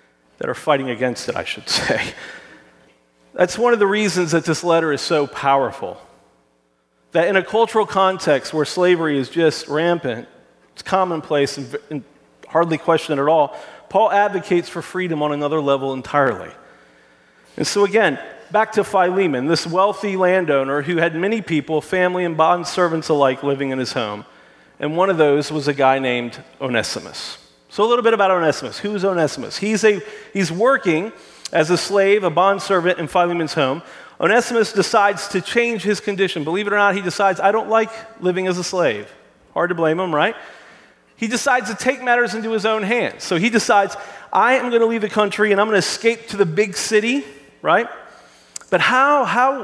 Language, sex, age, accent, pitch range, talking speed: English, male, 40-59, American, 150-205 Hz, 185 wpm